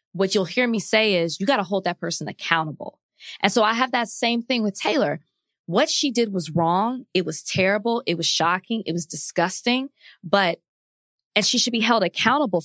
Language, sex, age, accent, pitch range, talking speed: English, female, 20-39, American, 170-225 Hz, 205 wpm